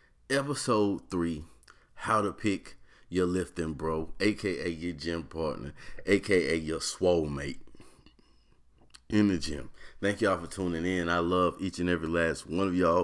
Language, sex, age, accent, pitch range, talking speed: English, male, 30-49, American, 75-95 Hz, 150 wpm